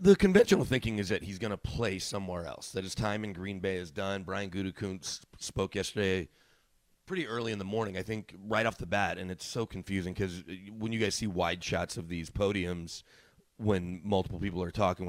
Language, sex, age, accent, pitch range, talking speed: English, male, 30-49, American, 95-110 Hz, 210 wpm